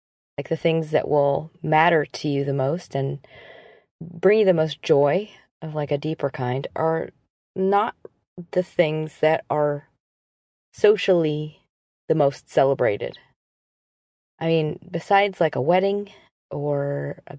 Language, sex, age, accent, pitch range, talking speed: English, female, 30-49, American, 140-170 Hz, 135 wpm